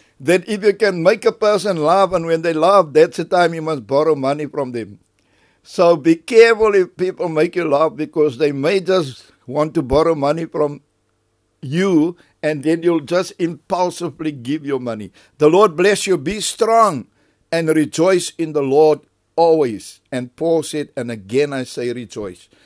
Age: 60-79